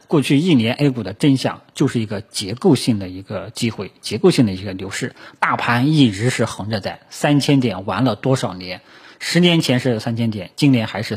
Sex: male